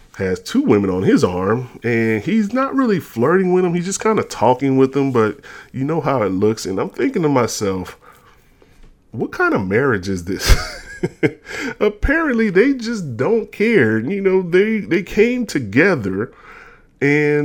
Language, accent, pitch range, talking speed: English, American, 100-150 Hz, 170 wpm